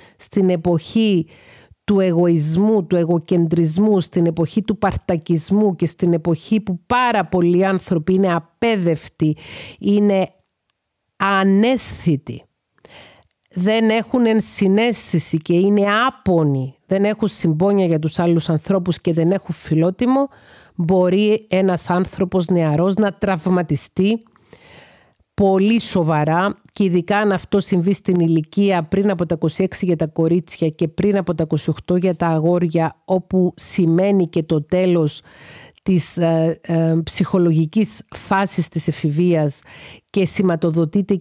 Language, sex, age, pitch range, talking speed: Greek, female, 40-59, 170-195 Hz, 120 wpm